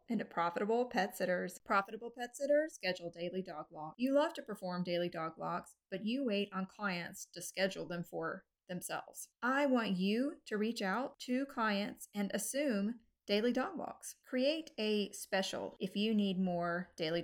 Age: 30-49